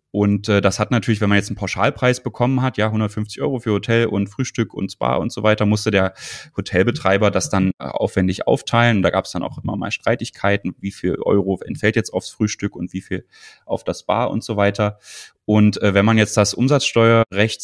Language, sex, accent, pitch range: German, male, German, 100-115 Hz